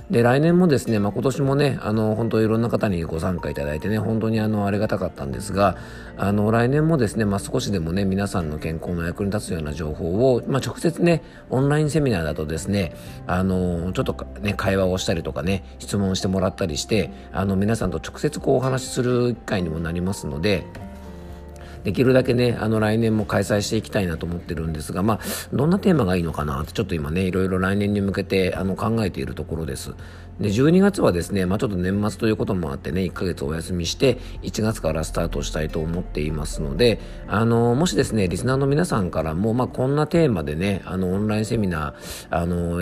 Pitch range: 85-110 Hz